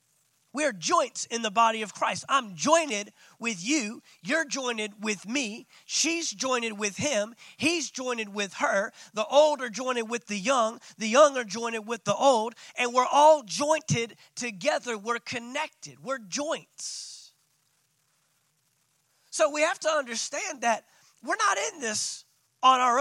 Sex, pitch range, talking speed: male, 165-260 Hz, 150 wpm